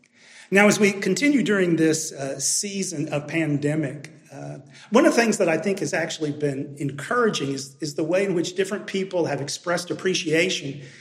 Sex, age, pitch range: male, 40-59, 150-185 Hz